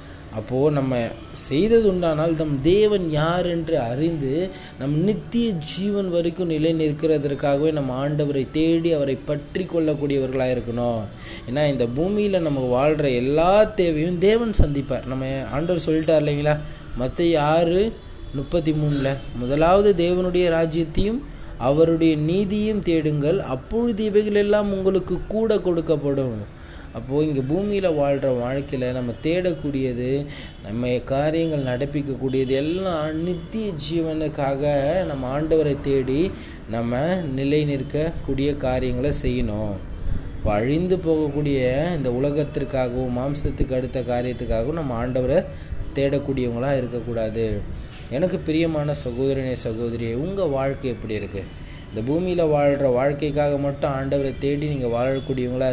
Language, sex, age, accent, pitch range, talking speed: Tamil, male, 20-39, native, 125-160 Hz, 105 wpm